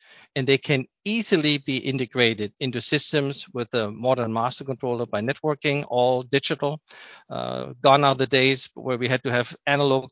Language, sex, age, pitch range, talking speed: English, male, 50-69, 125-150 Hz, 165 wpm